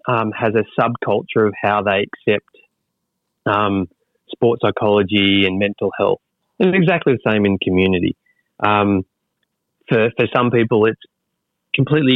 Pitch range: 105-125 Hz